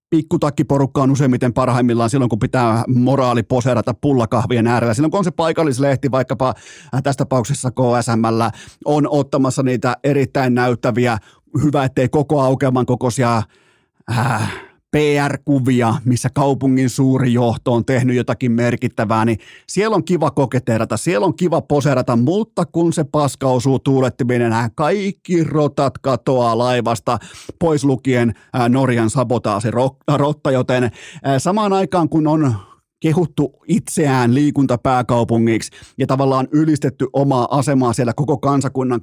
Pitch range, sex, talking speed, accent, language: 120-150 Hz, male, 120 wpm, native, Finnish